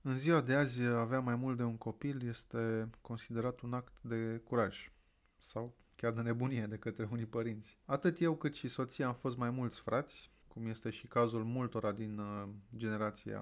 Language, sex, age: Romanian, male, 30-49